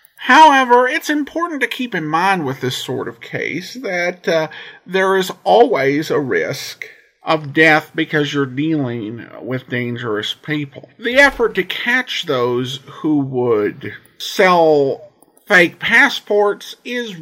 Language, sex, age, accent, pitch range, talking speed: English, male, 50-69, American, 140-220 Hz, 130 wpm